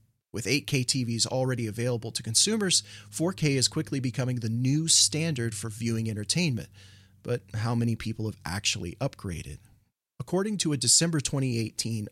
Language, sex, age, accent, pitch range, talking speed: English, male, 40-59, American, 115-145 Hz, 145 wpm